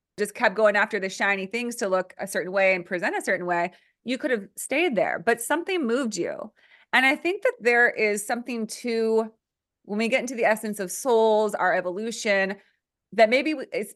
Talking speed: 200 wpm